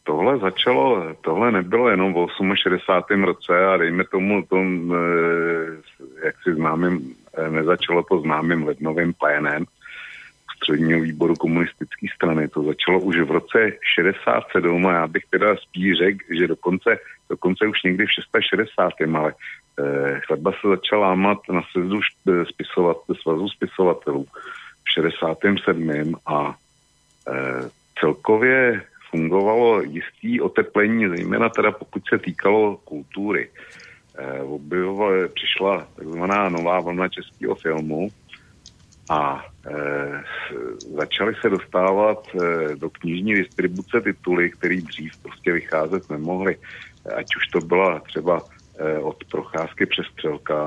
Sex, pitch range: male, 80-90 Hz